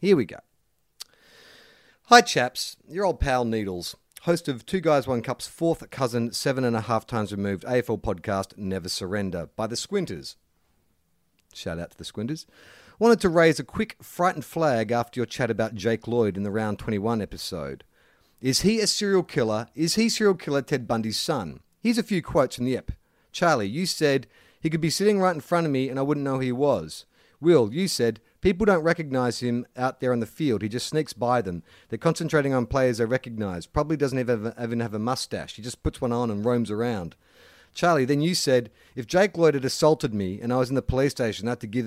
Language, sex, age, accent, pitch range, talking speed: English, male, 40-59, Australian, 110-150 Hz, 210 wpm